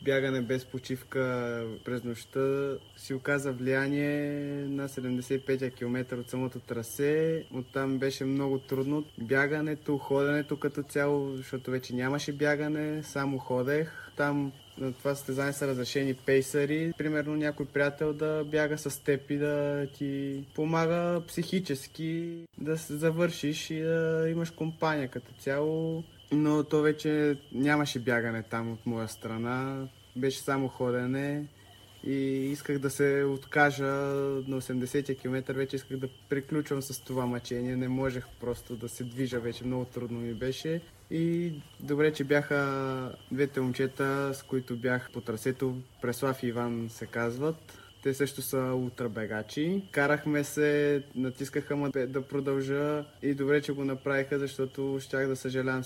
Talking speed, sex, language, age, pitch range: 140 wpm, male, Bulgarian, 20-39, 125-145 Hz